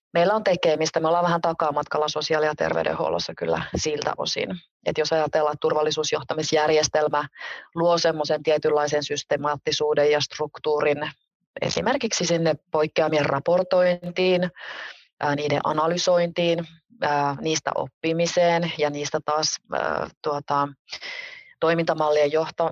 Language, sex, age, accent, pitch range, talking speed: Finnish, female, 30-49, native, 150-170 Hz, 90 wpm